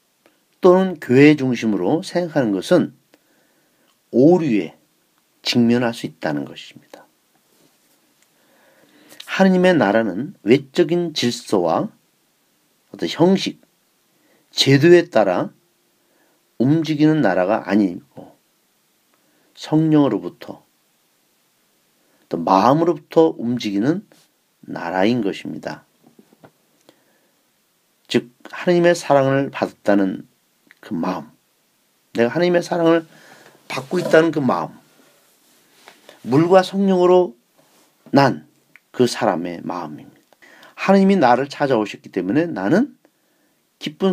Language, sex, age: Korean, male, 40-59